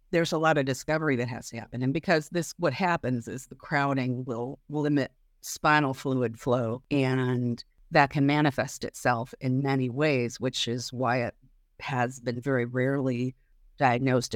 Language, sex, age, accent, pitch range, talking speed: English, female, 50-69, American, 125-145 Hz, 160 wpm